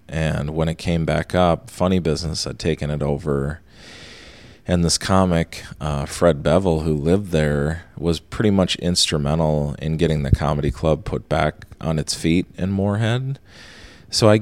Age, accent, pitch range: 30-49, American, 75-90 Hz